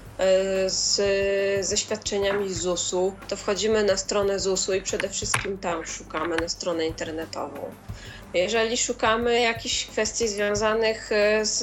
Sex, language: female, Polish